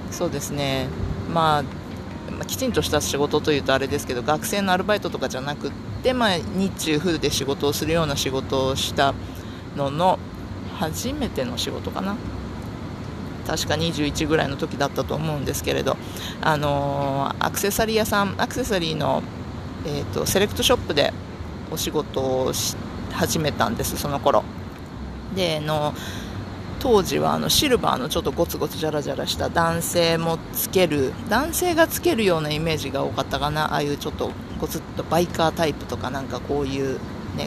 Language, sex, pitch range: Japanese, female, 135-175 Hz